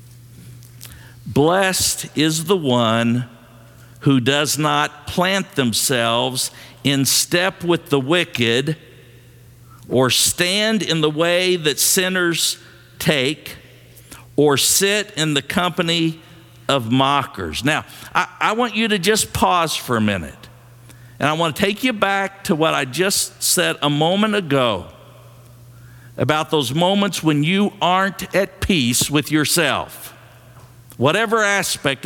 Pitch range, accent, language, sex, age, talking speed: 120-175 Hz, American, English, male, 50-69, 125 wpm